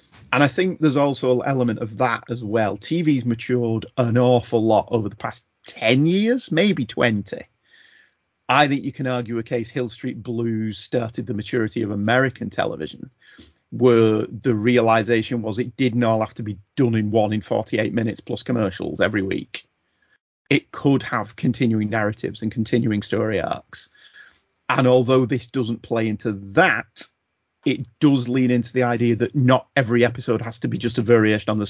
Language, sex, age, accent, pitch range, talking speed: English, male, 40-59, British, 110-135 Hz, 175 wpm